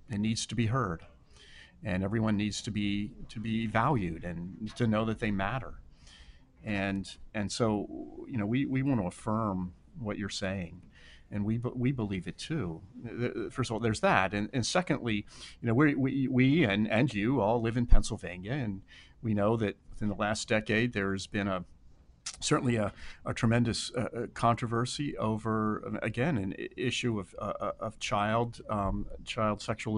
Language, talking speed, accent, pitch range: English, 170 wpm, American, 100-120 Hz